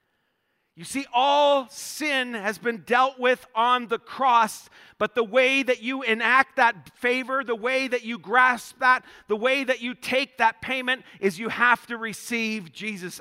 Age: 40-59